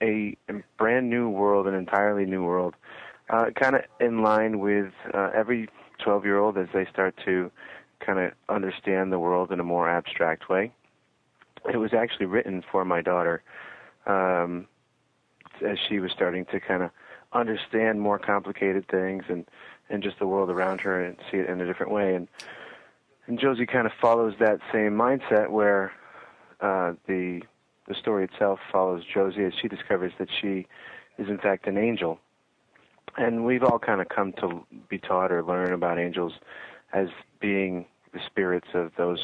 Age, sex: 30-49, male